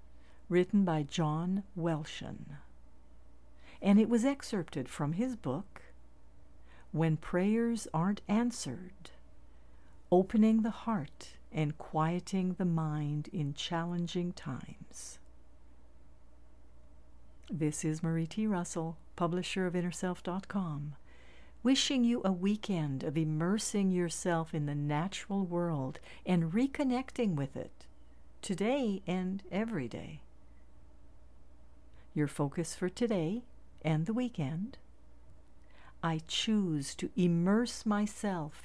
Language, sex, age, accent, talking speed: English, female, 60-79, American, 100 wpm